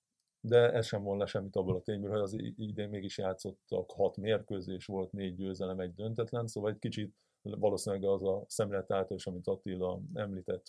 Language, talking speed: Hungarian, 175 wpm